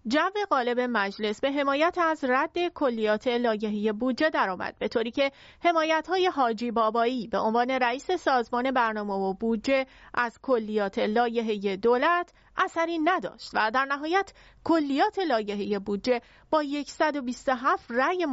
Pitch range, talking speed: 230-310 Hz, 130 wpm